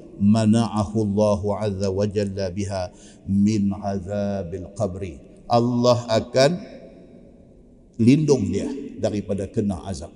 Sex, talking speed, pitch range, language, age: male, 95 wpm, 105-125 Hz, Malay, 50-69